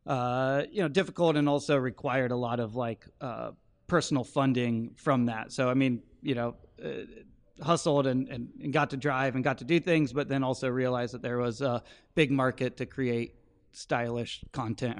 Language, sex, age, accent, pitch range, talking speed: English, male, 30-49, American, 120-135 Hz, 190 wpm